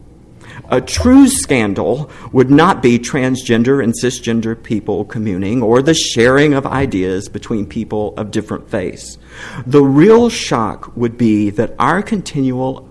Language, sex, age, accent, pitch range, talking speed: English, male, 50-69, American, 100-140 Hz, 135 wpm